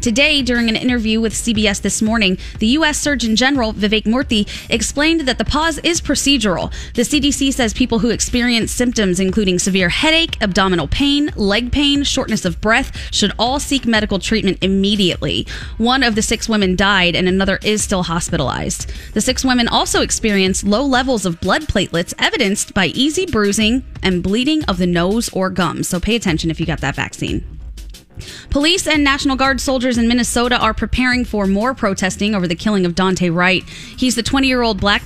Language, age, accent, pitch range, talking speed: English, 20-39, American, 185-255 Hz, 180 wpm